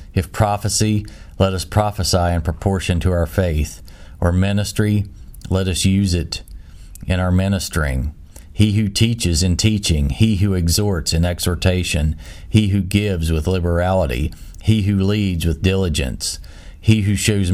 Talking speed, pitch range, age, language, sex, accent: 145 wpm, 80-100 Hz, 40-59, English, male, American